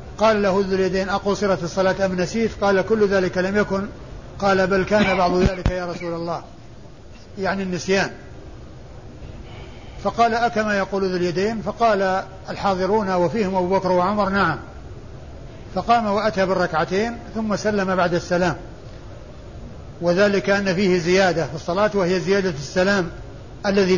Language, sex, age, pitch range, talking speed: Arabic, male, 60-79, 180-200 Hz, 130 wpm